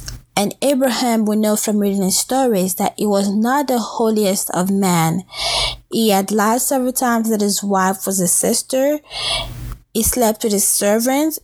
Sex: female